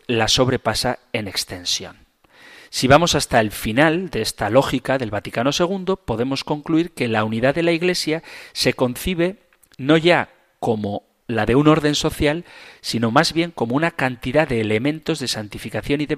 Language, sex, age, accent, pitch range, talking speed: Spanish, male, 40-59, Spanish, 115-160 Hz, 165 wpm